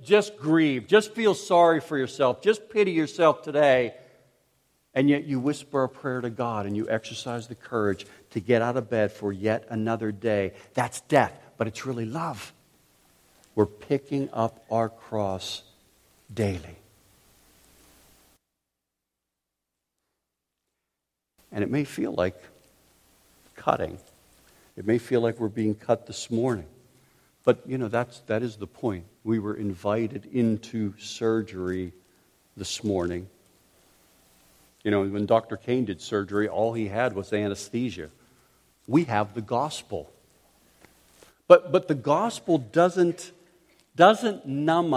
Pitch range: 100-135 Hz